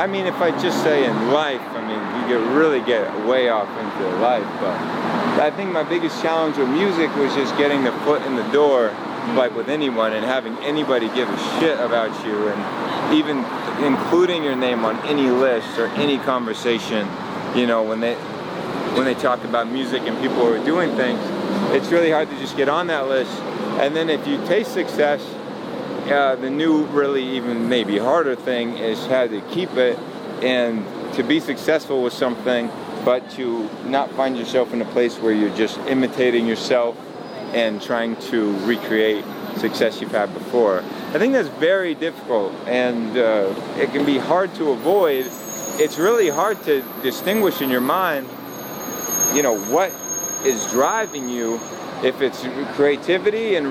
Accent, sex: American, male